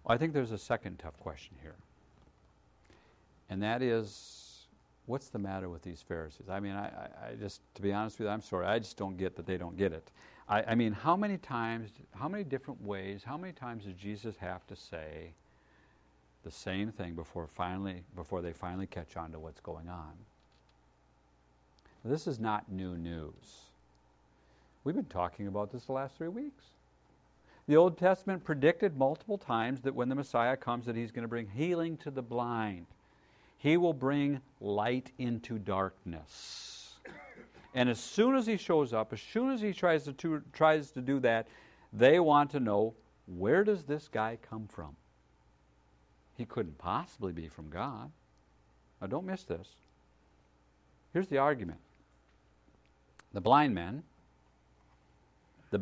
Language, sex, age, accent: English, male, 50-69, American